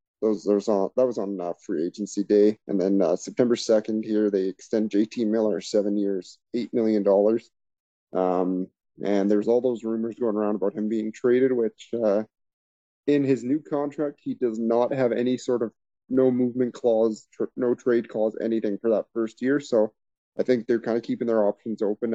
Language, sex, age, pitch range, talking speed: English, male, 30-49, 105-125 Hz, 190 wpm